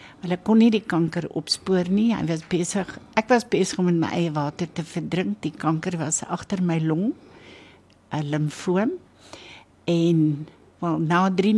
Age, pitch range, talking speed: 60-79, 160-230 Hz, 165 wpm